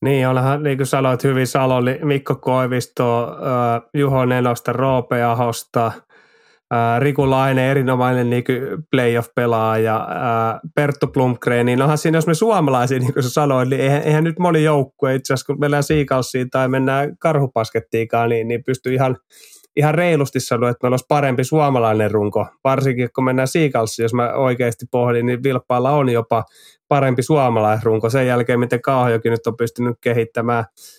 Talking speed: 145 wpm